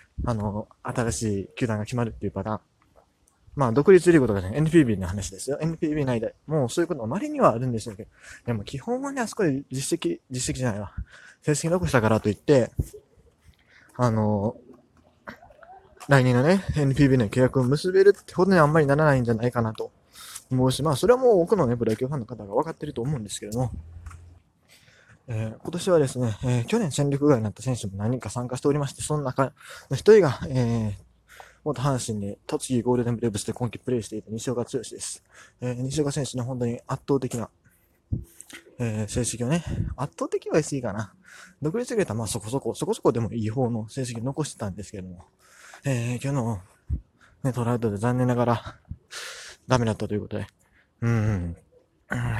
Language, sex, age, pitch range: Japanese, male, 20-39, 110-145 Hz